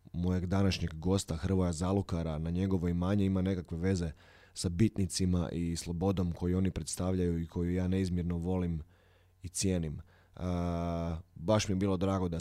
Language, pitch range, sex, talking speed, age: Croatian, 85-100 Hz, male, 155 wpm, 20-39